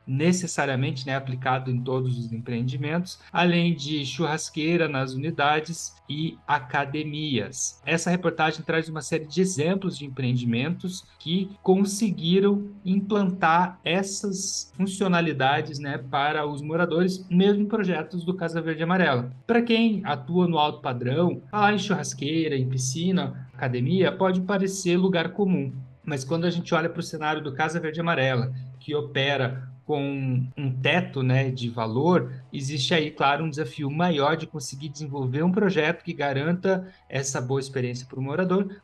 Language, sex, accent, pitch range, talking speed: Portuguese, male, Brazilian, 130-170 Hz, 145 wpm